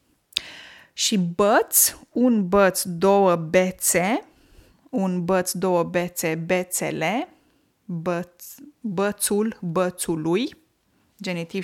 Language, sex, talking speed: Romanian, female, 75 wpm